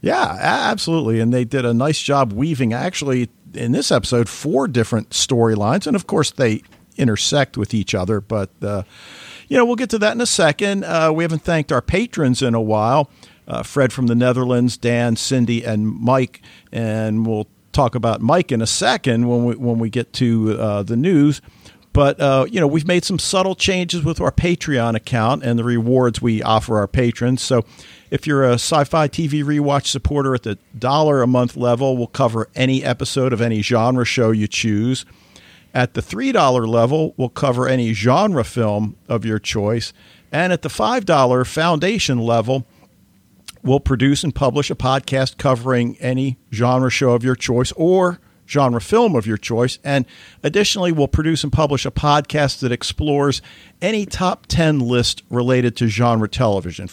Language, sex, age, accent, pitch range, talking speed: English, male, 50-69, American, 115-145 Hz, 180 wpm